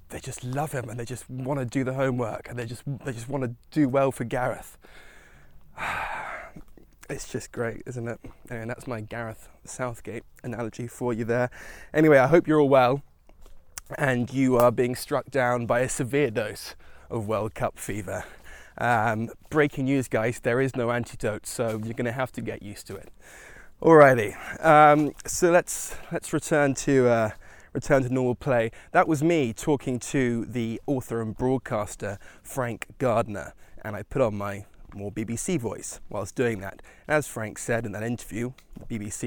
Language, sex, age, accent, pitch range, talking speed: English, male, 20-39, British, 110-130 Hz, 180 wpm